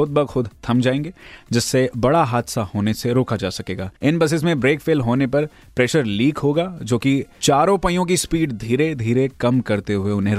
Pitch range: 115-145 Hz